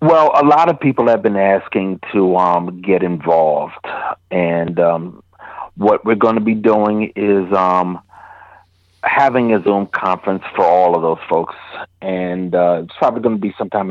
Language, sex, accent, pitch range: English, male, American, 90-110 Hz